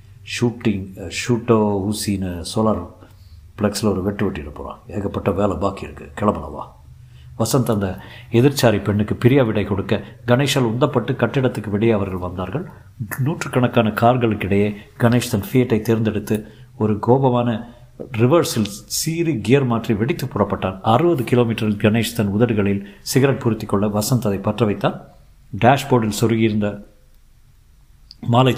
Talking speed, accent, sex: 105 wpm, native, male